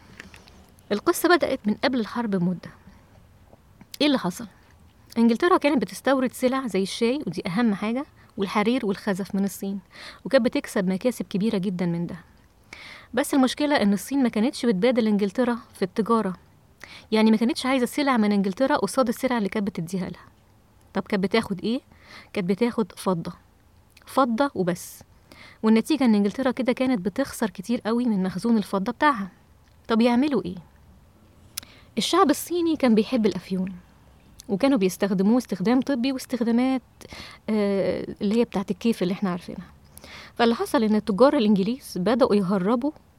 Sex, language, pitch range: female, English, 190-255 Hz